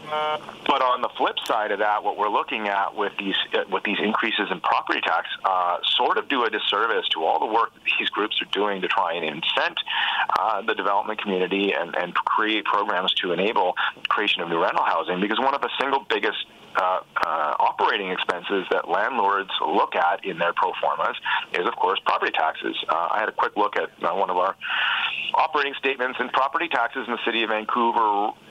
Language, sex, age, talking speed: English, male, 40-59, 205 wpm